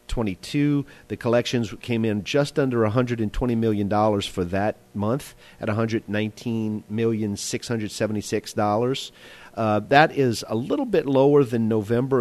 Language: English